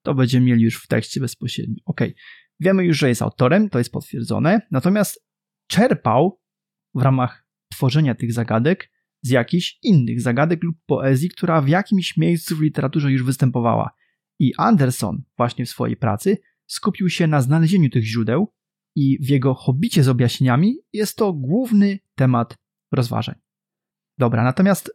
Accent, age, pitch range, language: native, 30-49, 130-180 Hz, Polish